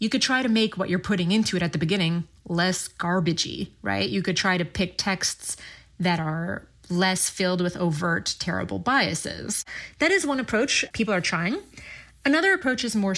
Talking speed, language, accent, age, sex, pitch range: 185 wpm, English, American, 30-49, female, 175-220 Hz